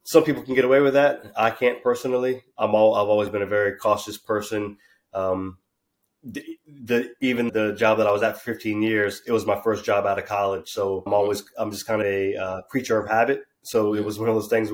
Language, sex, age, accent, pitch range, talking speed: English, male, 20-39, American, 100-115 Hz, 240 wpm